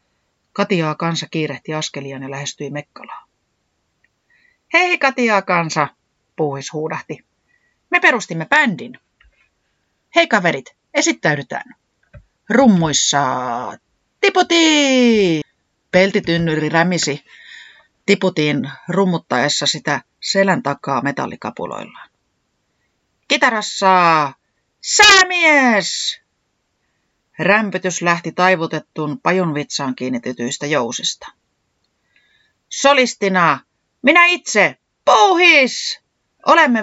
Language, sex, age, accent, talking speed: Finnish, female, 30-49, native, 70 wpm